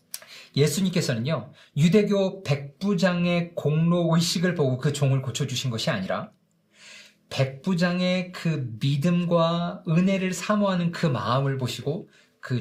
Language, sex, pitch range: Korean, male, 135-185 Hz